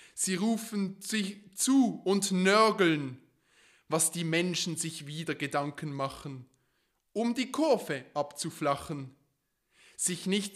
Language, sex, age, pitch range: German, male, 20-39, 145-190 Hz